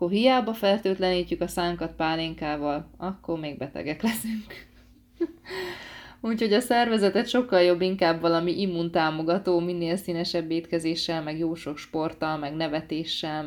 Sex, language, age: female, Hungarian, 20-39